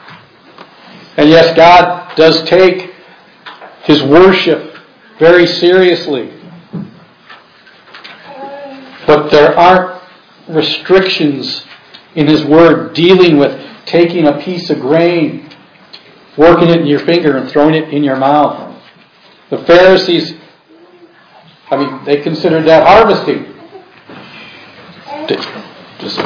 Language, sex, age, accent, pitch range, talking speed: English, male, 50-69, American, 150-190 Hz, 100 wpm